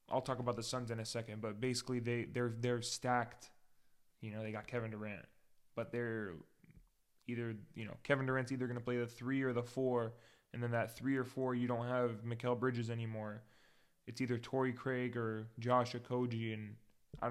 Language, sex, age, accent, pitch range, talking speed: English, male, 20-39, American, 115-130 Hz, 200 wpm